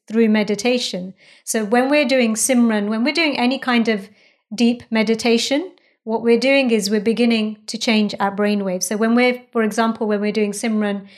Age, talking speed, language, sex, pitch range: 30-49, 180 wpm, English, female, 215-250 Hz